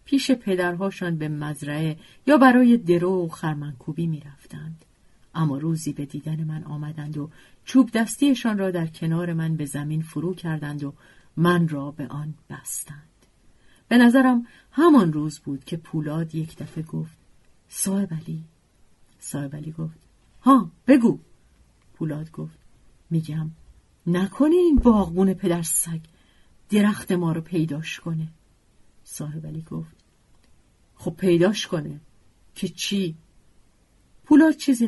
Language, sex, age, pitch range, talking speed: Persian, female, 40-59, 155-225 Hz, 120 wpm